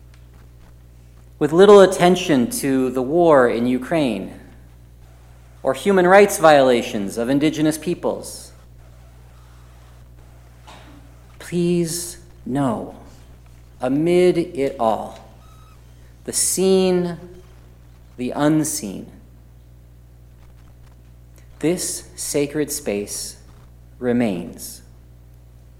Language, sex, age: English, male, 40-59